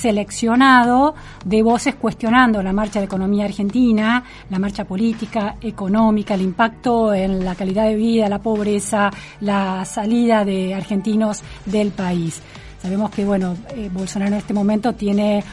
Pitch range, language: 200-240 Hz, Spanish